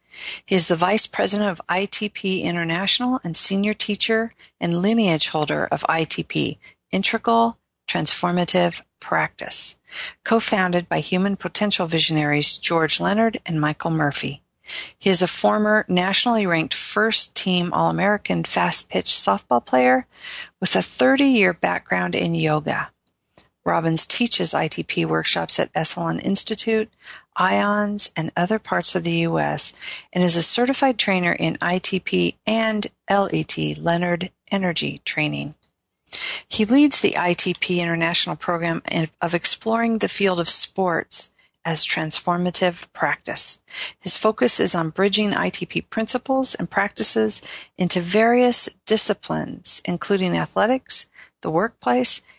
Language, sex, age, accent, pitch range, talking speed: English, female, 40-59, American, 165-215 Hz, 120 wpm